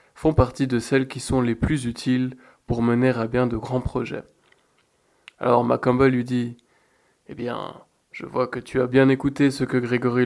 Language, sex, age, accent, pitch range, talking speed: French, male, 20-39, French, 125-145 Hz, 185 wpm